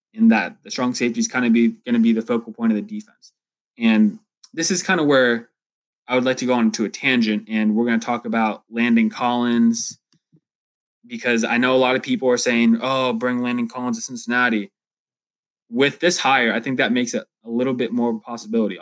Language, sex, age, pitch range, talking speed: English, male, 20-39, 115-145 Hz, 225 wpm